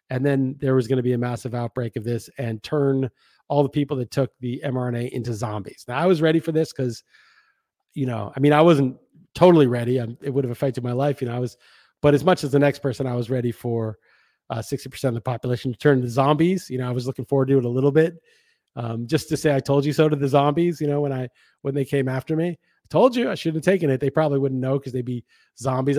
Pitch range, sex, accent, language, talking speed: 125-145 Hz, male, American, English, 270 wpm